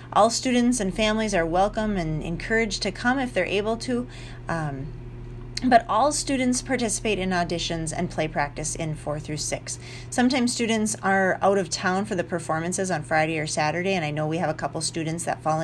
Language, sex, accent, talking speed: English, female, American, 195 wpm